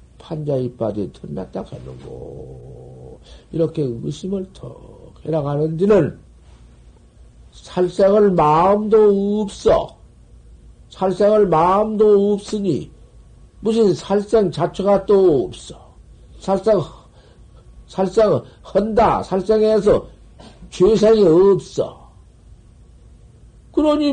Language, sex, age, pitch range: Korean, male, 60-79, 130-200 Hz